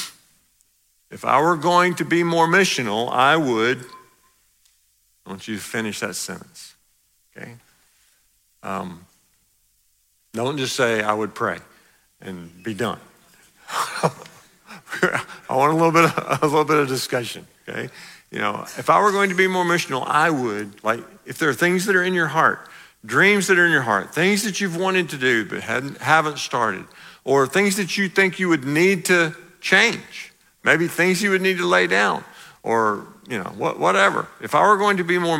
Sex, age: male, 50-69